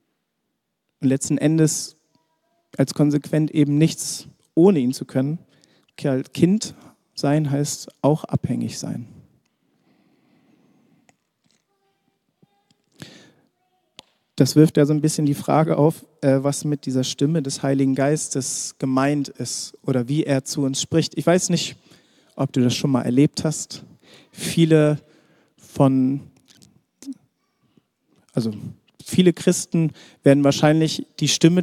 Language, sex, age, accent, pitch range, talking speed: German, male, 40-59, German, 130-160 Hz, 115 wpm